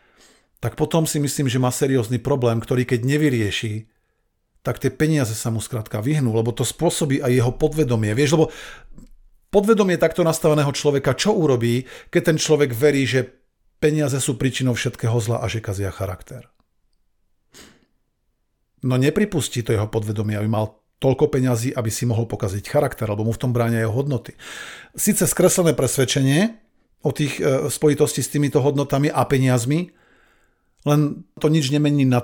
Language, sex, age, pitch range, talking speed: Slovak, male, 40-59, 120-150 Hz, 155 wpm